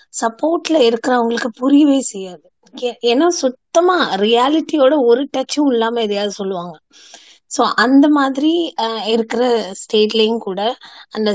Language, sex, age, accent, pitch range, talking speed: Tamil, female, 20-39, native, 205-270 Hz, 100 wpm